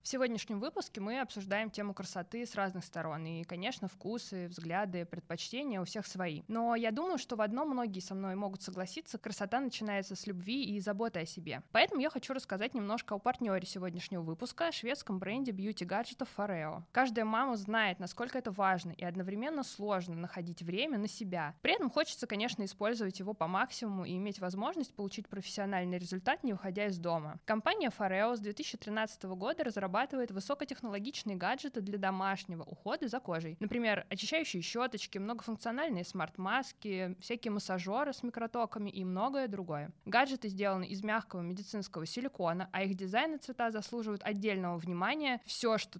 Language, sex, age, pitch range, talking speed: Russian, female, 20-39, 185-240 Hz, 160 wpm